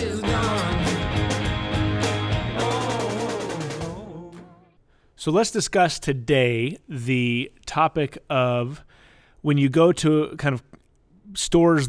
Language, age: English, 30-49